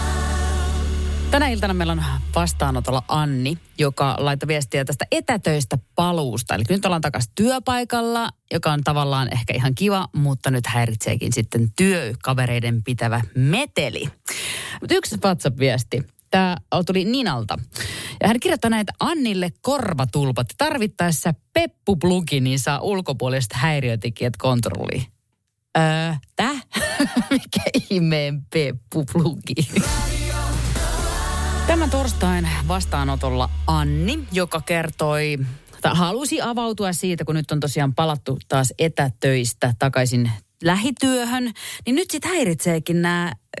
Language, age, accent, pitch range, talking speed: Finnish, 30-49, native, 120-185 Hz, 110 wpm